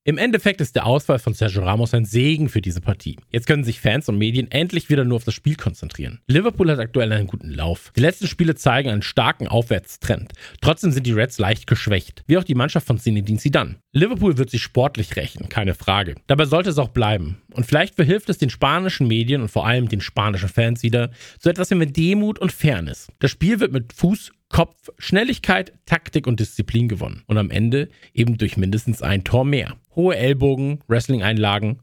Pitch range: 105-145 Hz